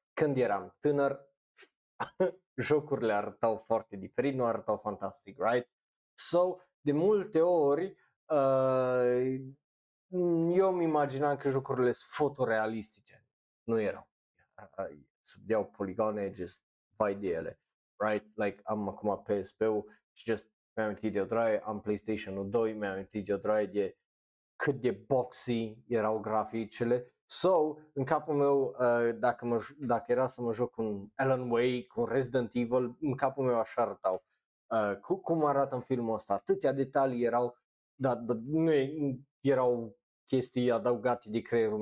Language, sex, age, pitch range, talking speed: Romanian, male, 20-39, 110-145 Hz, 140 wpm